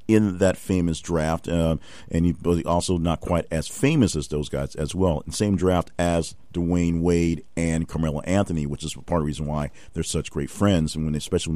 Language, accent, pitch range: English, American, 80-95 Hz